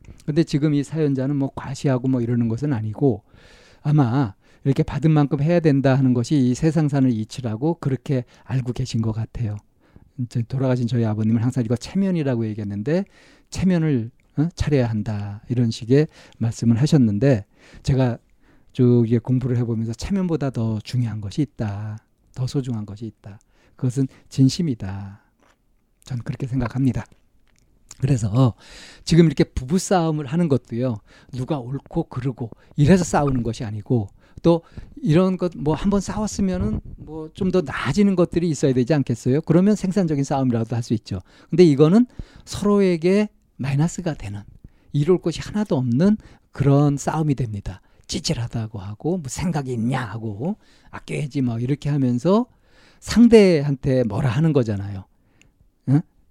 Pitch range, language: 115-155 Hz, Korean